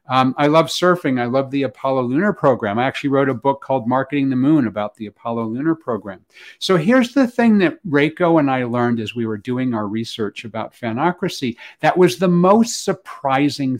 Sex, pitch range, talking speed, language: male, 130-175 Hz, 200 wpm, English